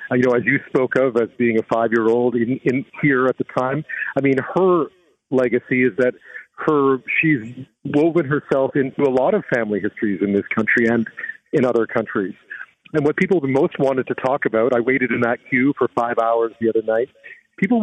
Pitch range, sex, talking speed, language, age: 120-150 Hz, male, 205 wpm, English, 40-59